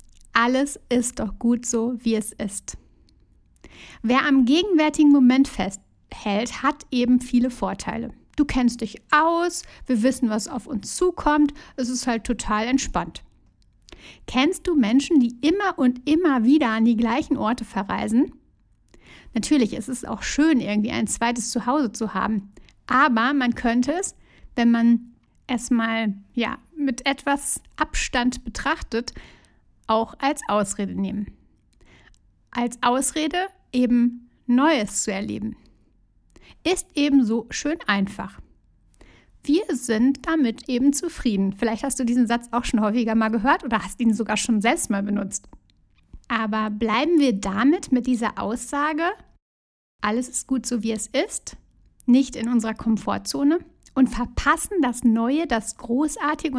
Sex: female